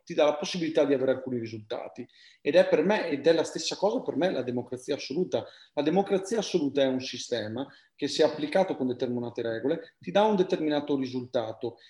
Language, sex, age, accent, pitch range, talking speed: Italian, male, 40-59, native, 125-190 Hz, 195 wpm